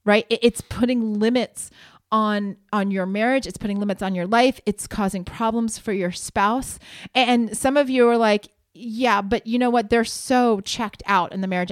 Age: 30-49